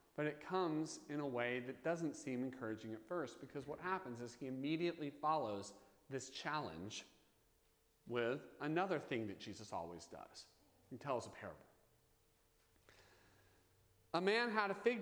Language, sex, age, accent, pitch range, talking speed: English, male, 40-59, American, 130-190 Hz, 150 wpm